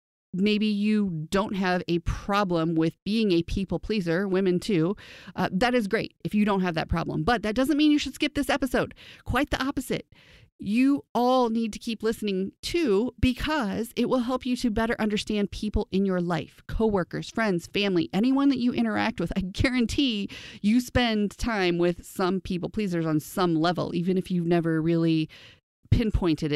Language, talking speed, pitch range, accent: English, 180 wpm, 175-235 Hz, American